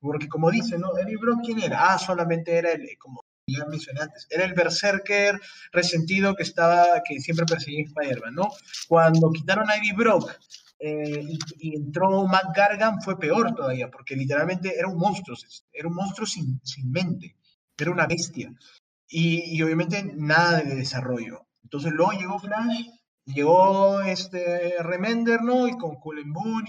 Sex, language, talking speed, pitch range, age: male, Spanish, 165 wpm, 150-200 Hz, 30-49